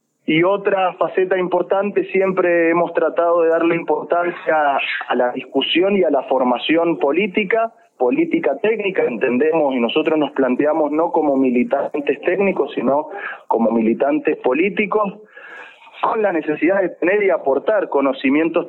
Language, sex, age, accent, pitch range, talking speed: Spanish, male, 30-49, Argentinian, 135-205 Hz, 130 wpm